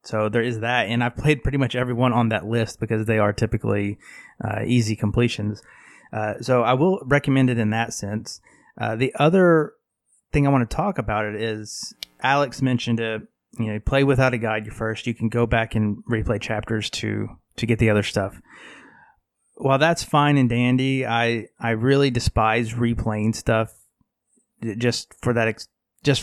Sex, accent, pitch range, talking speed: male, American, 110-135 Hz, 180 wpm